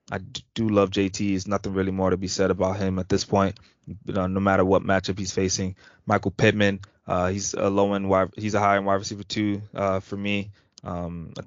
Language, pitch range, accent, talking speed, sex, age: English, 95-105 Hz, American, 225 wpm, male, 20-39